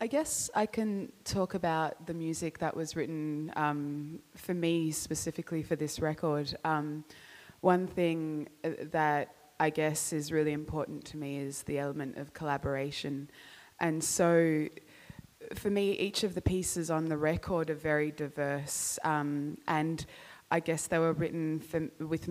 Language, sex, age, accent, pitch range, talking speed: English, female, 20-39, Australian, 145-165 Hz, 155 wpm